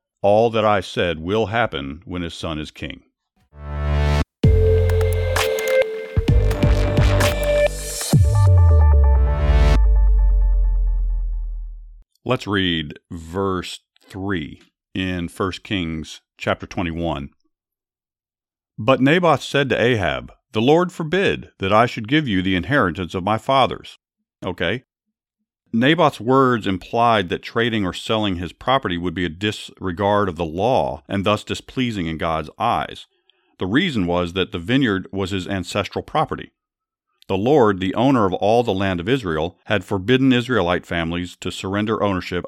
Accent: American